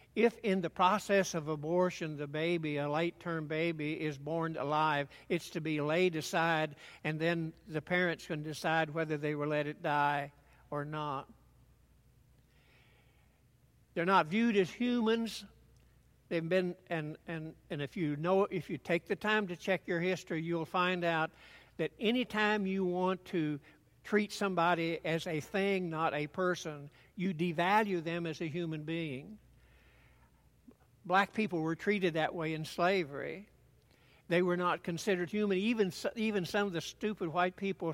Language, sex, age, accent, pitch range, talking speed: English, male, 60-79, American, 155-180 Hz, 155 wpm